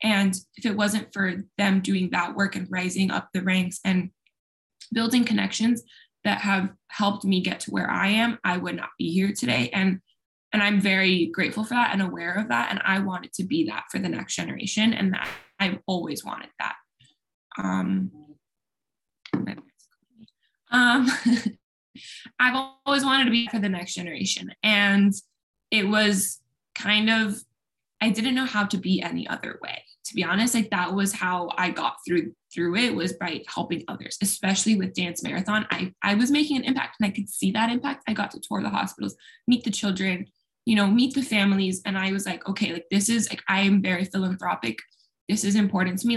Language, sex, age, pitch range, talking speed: English, female, 10-29, 185-230 Hz, 190 wpm